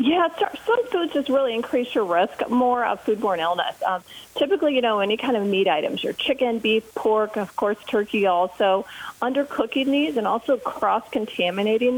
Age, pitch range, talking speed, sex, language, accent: 40-59, 185-255 Hz, 170 wpm, female, English, American